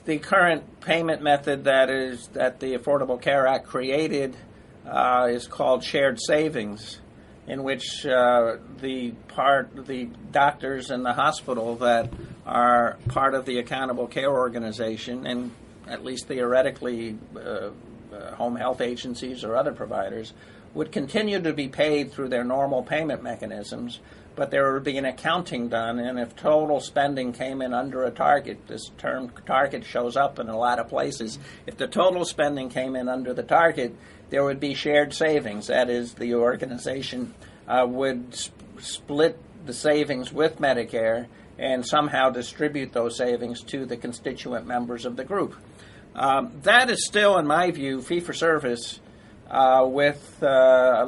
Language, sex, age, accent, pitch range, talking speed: English, male, 50-69, American, 120-140 Hz, 155 wpm